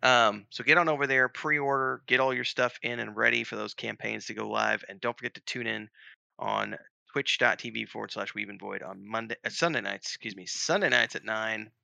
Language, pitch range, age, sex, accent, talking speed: English, 105-130 Hz, 30-49, male, American, 220 wpm